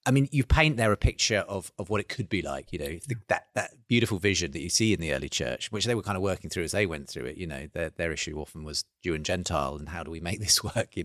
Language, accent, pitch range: English, British, 85-105 Hz